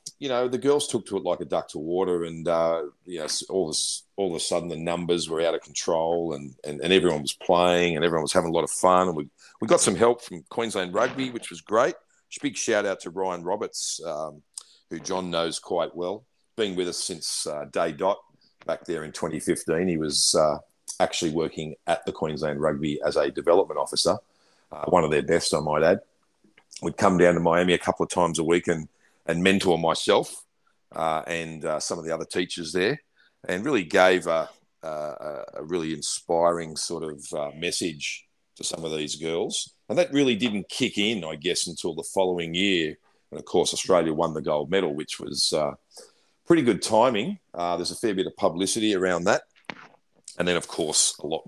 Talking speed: 210 wpm